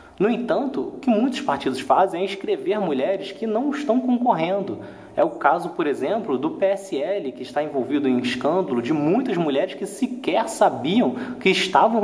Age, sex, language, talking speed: 20-39, male, Portuguese, 170 wpm